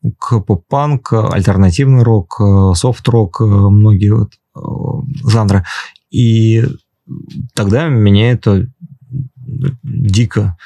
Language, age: Russian, 20-39